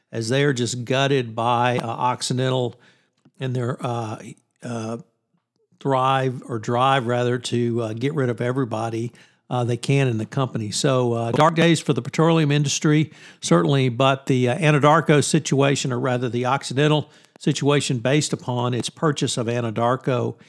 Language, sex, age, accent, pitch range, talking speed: English, male, 60-79, American, 120-145 Hz, 155 wpm